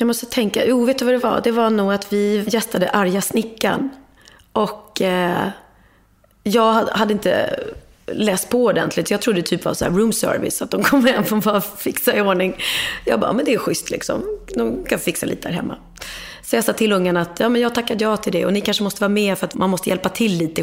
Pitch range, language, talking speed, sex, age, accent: 180-230 Hz, English, 235 wpm, female, 30-49, Swedish